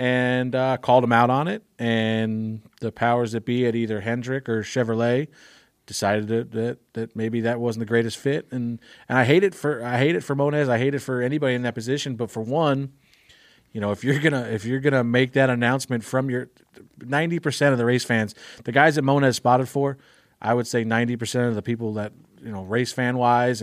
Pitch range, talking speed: 115-130 Hz, 220 wpm